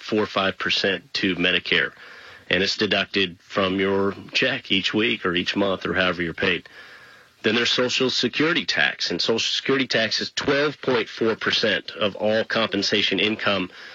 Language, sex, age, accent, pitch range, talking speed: English, male, 40-59, American, 95-110 Hz, 150 wpm